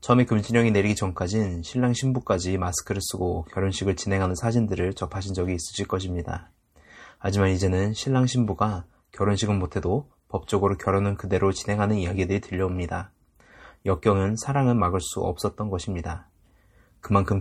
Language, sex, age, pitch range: Korean, male, 20-39, 90-110 Hz